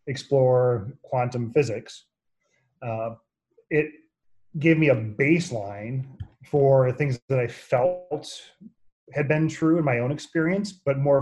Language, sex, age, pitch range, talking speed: English, male, 30-49, 120-140 Hz, 125 wpm